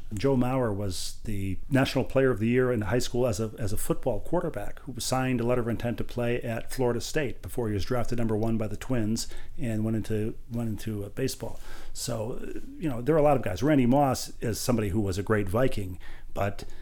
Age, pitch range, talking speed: 40-59, 105-125 Hz, 230 wpm